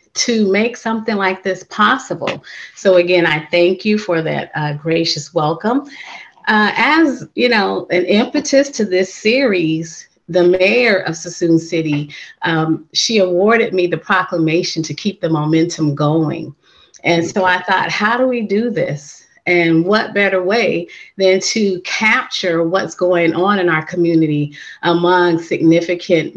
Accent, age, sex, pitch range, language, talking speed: American, 30-49, female, 165-195 Hz, English, 150 wpm